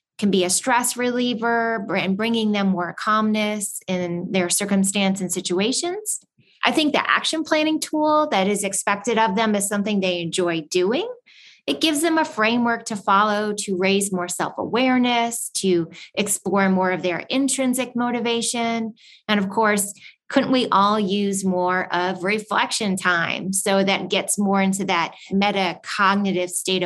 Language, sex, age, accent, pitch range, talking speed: English, female, 20-39, American, 185-245 Hz, 150 wpm